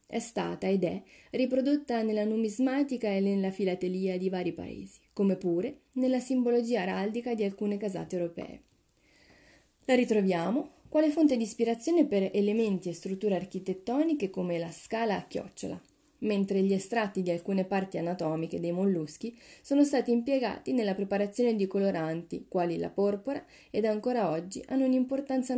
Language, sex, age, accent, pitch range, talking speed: Italian, female, 30-49, native, 180-255 Hz, 145 wpm